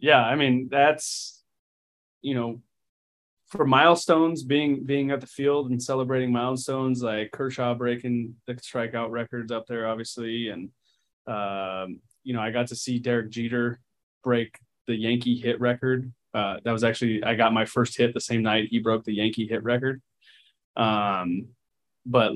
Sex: male